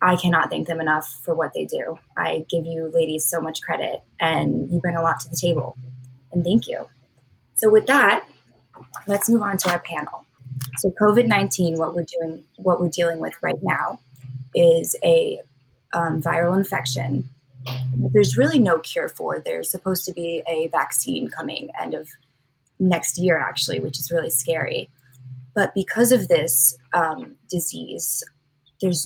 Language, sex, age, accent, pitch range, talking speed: English, female, 20-39, American, 135-185 Hz, 165 wpm